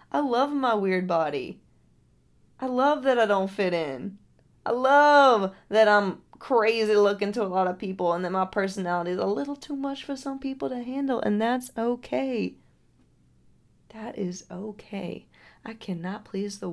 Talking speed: 170 wpm